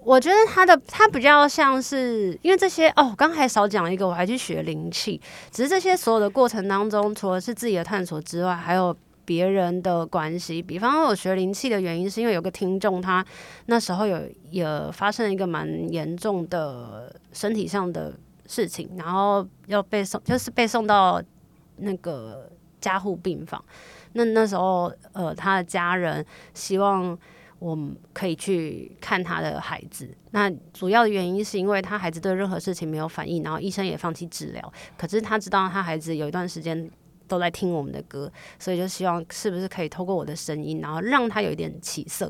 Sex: female